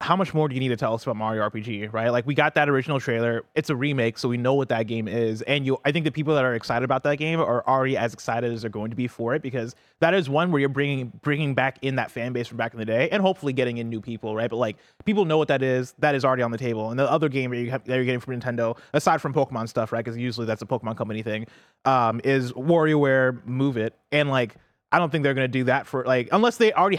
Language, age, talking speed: English, 20-39, 295 wpm